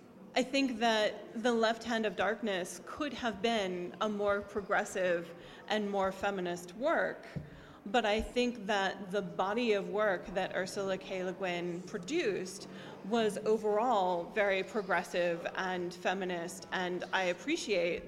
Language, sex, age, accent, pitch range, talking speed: Italian, female, 30-49, American, 185-215 Hz, 135 wpm